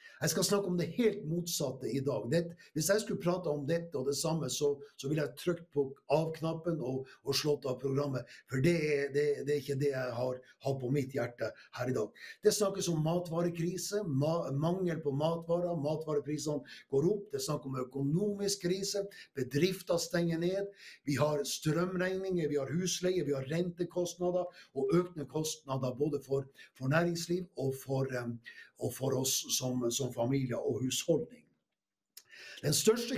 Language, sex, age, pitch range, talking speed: English, male, 60-79, 135-175 Hz, 170 wpm